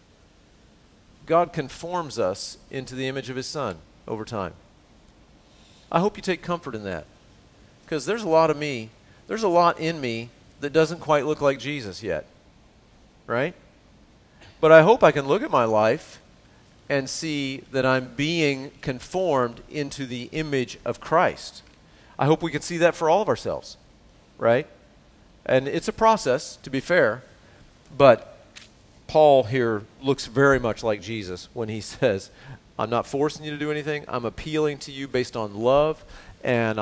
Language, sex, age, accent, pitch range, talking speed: English, male, 40-59, American, 115-150 Hz, 165 wpm